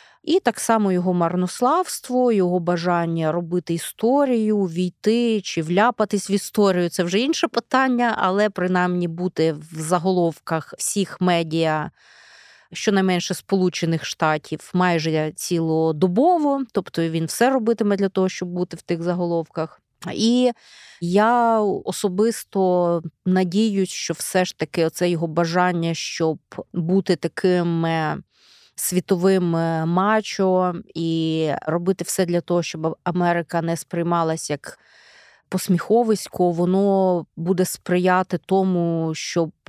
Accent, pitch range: native, 165-200 Hz